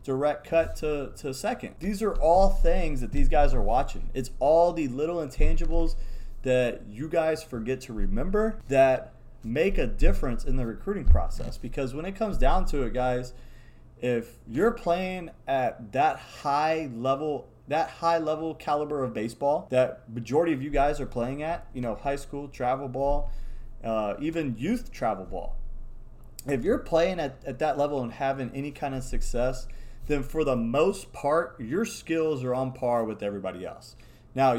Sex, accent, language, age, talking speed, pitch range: male, American, English, 30-49, 175 wpm, 125-160 Hz